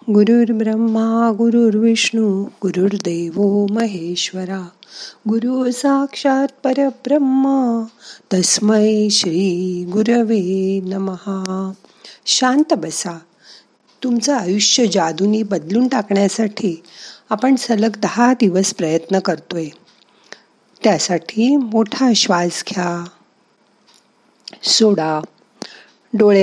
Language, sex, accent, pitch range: Marathi, female, native, 180-235 Hz